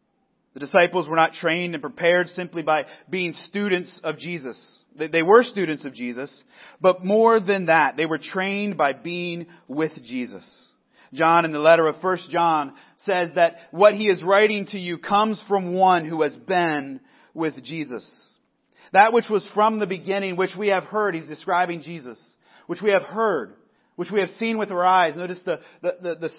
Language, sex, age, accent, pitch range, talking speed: English, male, 30-49, American, 150-190 Hz, 185 wpm